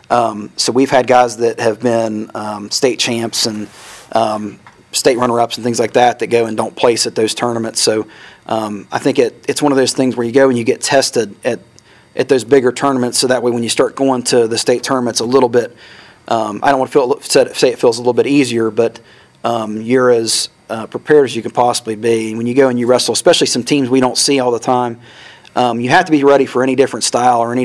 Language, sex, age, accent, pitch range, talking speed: English, male, 40-59, American, 115-130 Hz, 245 wpm